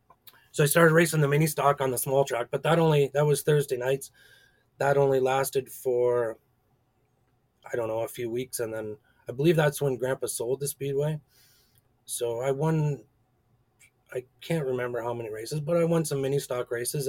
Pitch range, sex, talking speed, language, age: 120-140 Hz, male, 190 wpm, English, 30-49